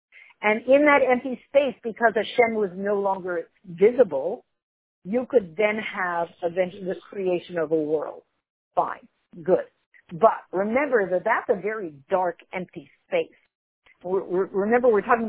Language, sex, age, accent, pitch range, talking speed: English, female, 50-69, American, 175-235 Hz, 145 wpm